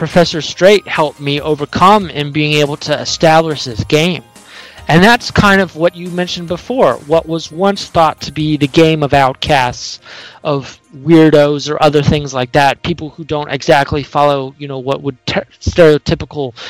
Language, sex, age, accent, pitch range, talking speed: English, male, 30-49, American, 145-175 Hz, 175 wpm